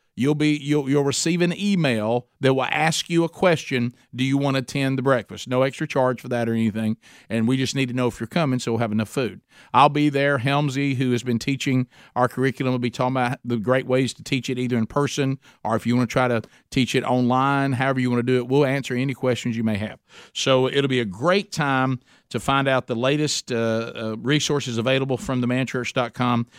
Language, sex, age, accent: English, male, 50-69, American